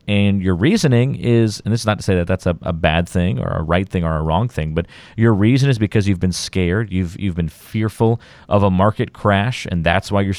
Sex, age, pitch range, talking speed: male, 30-49, 90-110 Hz, 255 wpm